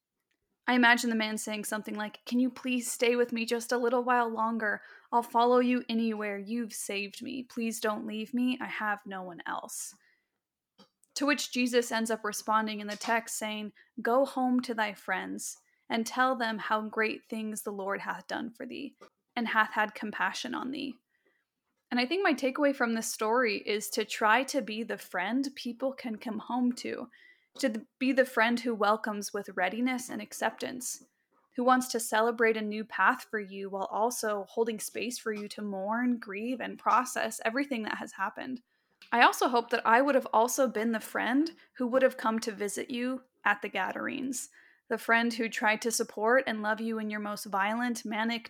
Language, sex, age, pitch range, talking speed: English, female, 20-39, 220-255 Hz, 195 wpm